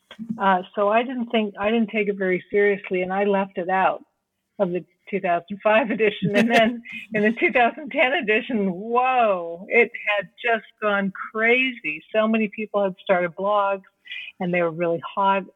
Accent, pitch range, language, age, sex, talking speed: American, 185-220 Hz, English, 50-69, female, 165 wpm